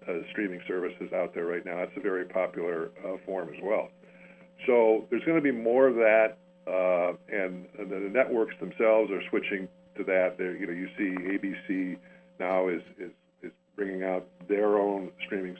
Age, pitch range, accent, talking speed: 50-69, 95-140 Hz, American, 180 wpm